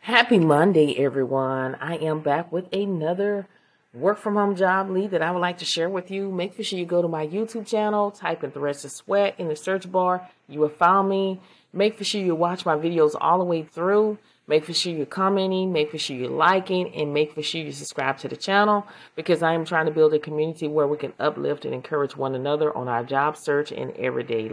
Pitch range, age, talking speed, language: 140-185 Hz, 30-49, 230 wpm, English